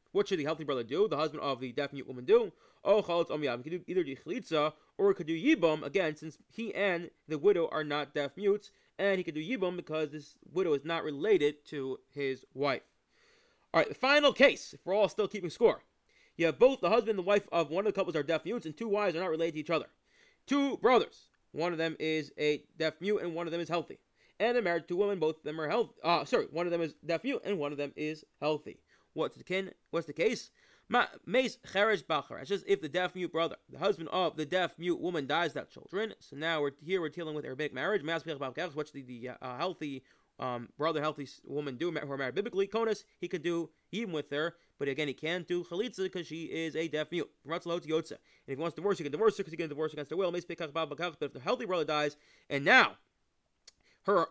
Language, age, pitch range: English, 20-39, 150-200 Hz